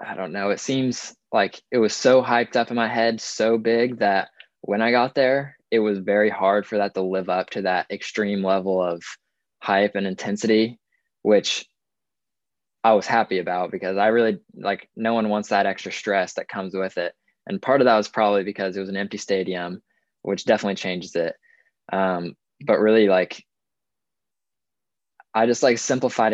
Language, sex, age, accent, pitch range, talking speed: English, male, 20-39, American, 95-110 Hz, 185 wpm